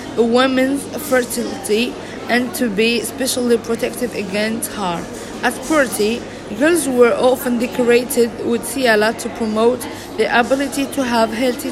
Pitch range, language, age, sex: 225-260 Hz, English, 40-59, female